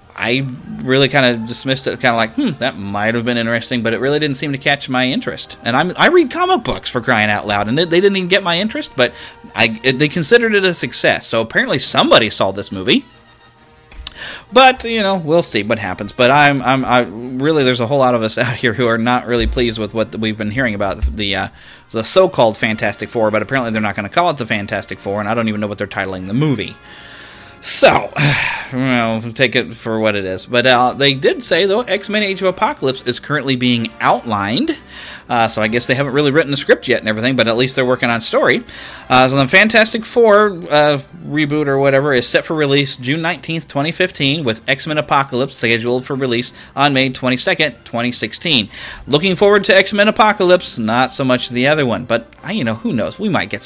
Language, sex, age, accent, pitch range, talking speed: English, male, 30-49, American, 115-150 Hz, 230 wpm